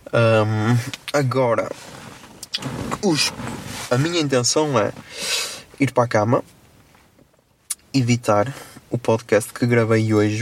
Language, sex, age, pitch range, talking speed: Portuguese, male, 20-39, 110-120 Hz, 85 wpm